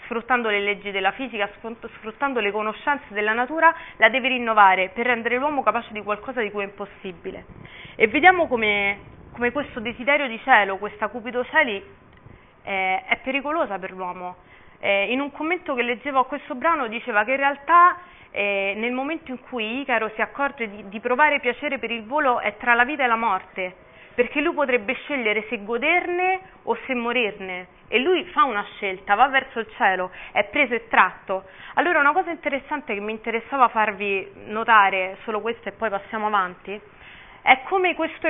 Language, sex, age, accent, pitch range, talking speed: Italian, female, 30-49, native, 205-280 Hz, 180 wpm